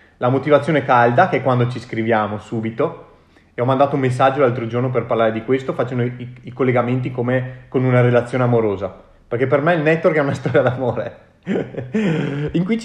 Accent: native